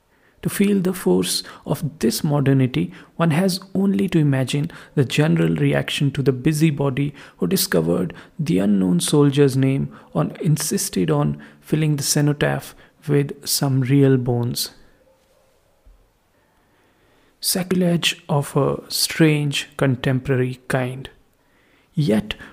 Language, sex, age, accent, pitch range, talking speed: English, male, 50-69, Indian, 130-170 Hz, 110 wpm